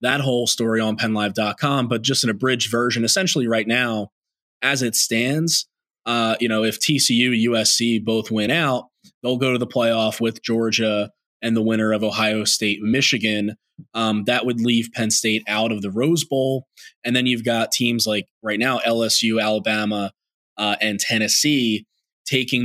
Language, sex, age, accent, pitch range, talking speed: English, male, 20-39, American, 110-130 Hz, 170 wpm